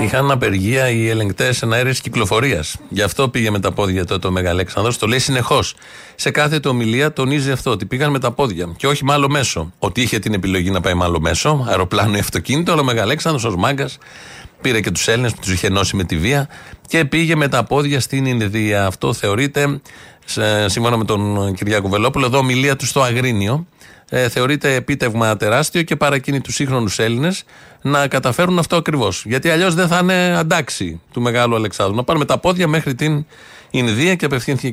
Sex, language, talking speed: male, Greek, 190 wpm